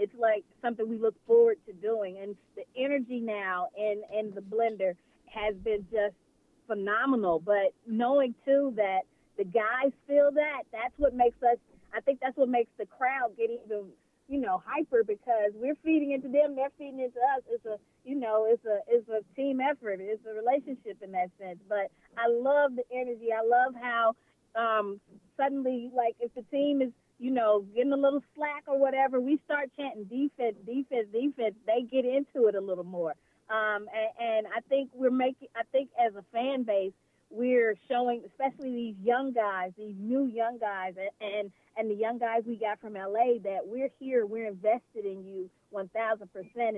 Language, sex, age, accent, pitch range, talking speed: English, female, 30-49, American, 205-265 Hz, 185 wpm